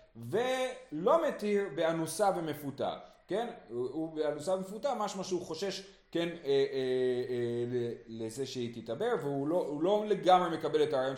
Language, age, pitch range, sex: Hebrew, 30-49, 125-185 Hz, male